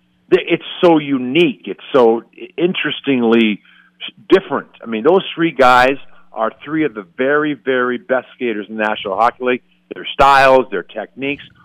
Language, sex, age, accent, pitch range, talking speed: English, male, 50-69, American, 105-145 Hz, 150 wpm